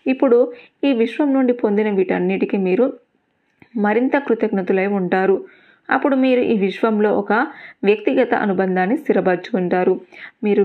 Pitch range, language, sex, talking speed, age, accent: 185-240 Hz, Telugu, female, 105 wpm, 20-39, native